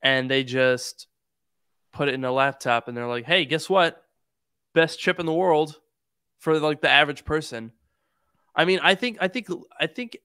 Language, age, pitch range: Chinese, 20-39, 130-175 Hz